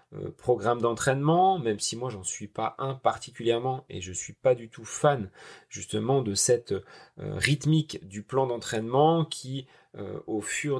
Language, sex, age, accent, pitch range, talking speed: French, male, 30-49, French, 105-140 Hz, 160 wpm